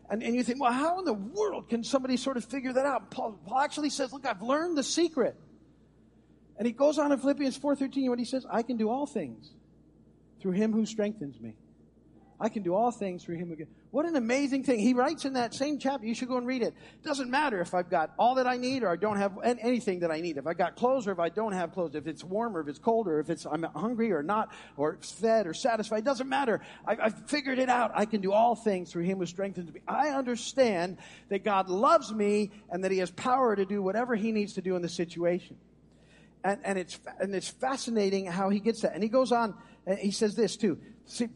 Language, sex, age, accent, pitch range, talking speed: English, male, 50-69, American, 170-245 Hz, 245 wpm